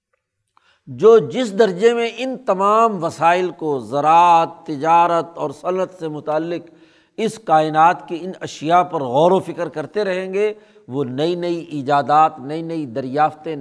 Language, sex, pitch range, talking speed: Urdu, male, 150-200 Hz, 145 wpm